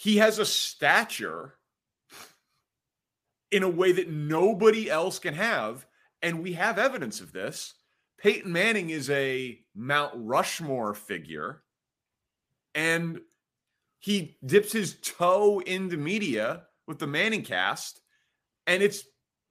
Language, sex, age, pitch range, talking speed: English, male, 30-49, 135-200 Hz, 115 wpm